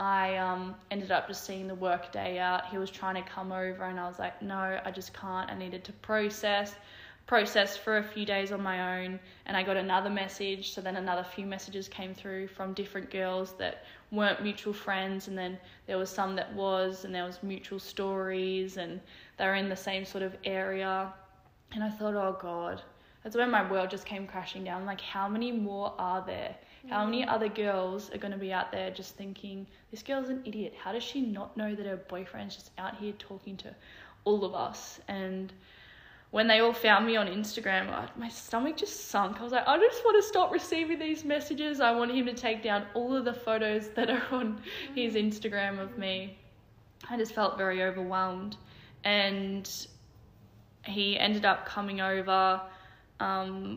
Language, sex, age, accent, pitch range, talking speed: English, female, 10-29, Australian, 190-215 Hz, 200 wpm